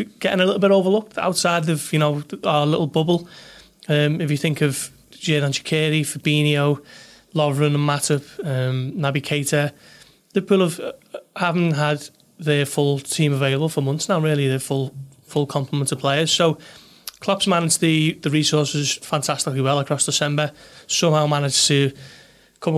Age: 30-49